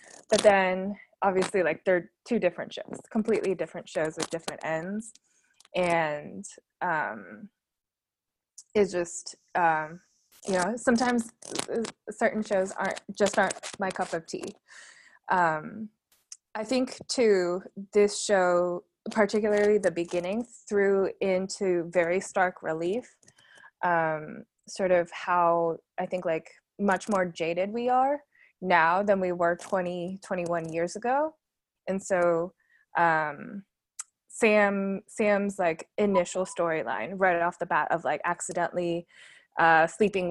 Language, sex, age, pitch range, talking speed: English, female, 20-39, 175-210 Hz, 120 wpm